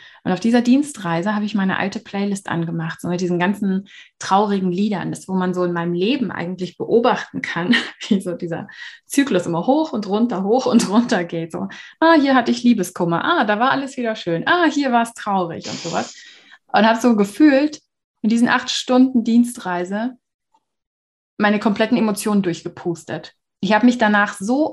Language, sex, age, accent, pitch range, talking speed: German, female, 20-39, German, 195-240 Hz, 180 wpm